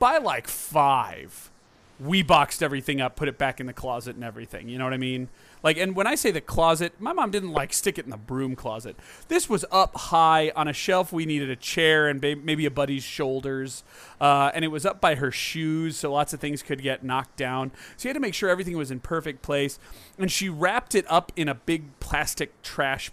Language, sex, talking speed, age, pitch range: English, male, 235 wpm, 30-49, 135-180 Hz